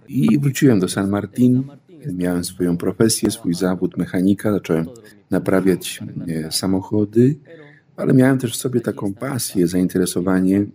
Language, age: Polish, 50-69